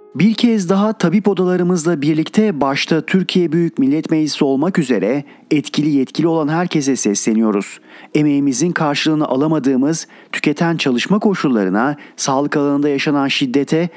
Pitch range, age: 135-170 Hz, 40-59